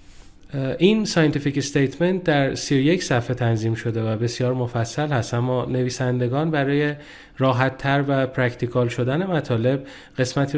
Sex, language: male, Persian